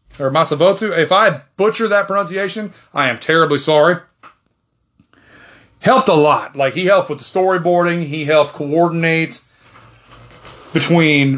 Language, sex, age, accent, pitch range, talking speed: English, male, 30-49, American, 140-190 Hz, 125 wpm